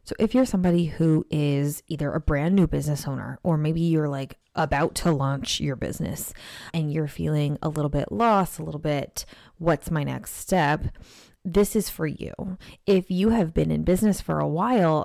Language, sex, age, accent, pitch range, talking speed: English, female, 20-39, American, 150-175 Hz, 190 wpm